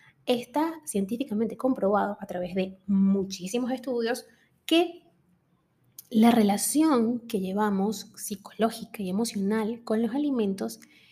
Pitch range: 190-240 Hz